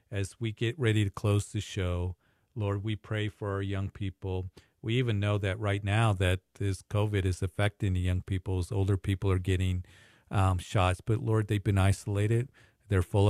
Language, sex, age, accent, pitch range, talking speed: English, male, 50-69, American, 95-110 Hz, 190 wpm